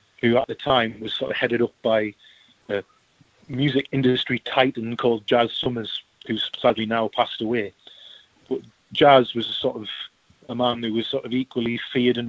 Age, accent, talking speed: 30-49, British, 180 wpm